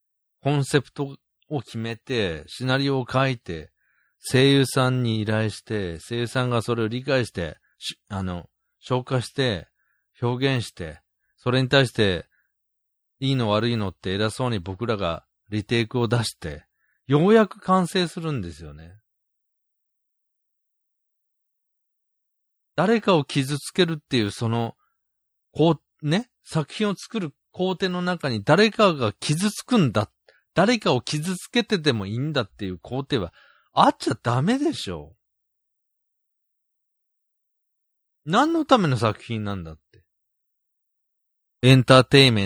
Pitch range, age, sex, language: 90-145 Hz, 40-59, male, Japanese